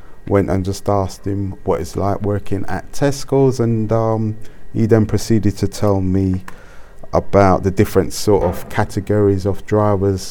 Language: English